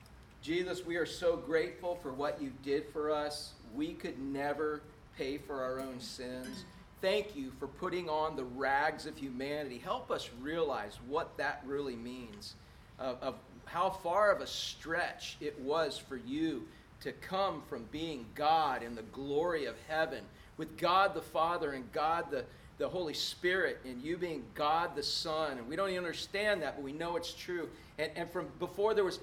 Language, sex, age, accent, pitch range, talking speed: English, male, 40-59, American, 135-175 Hz, 185 wpm